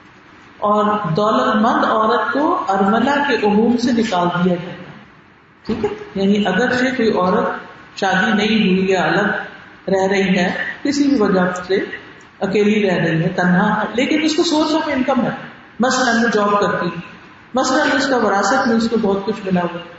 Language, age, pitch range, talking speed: Urdu, 50-69, 190-245 Hz, 155 wpm